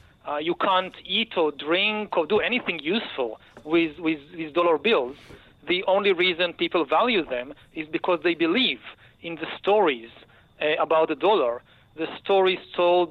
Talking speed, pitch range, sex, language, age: 165 wpm, 160-205 Hz, male, English, 40-59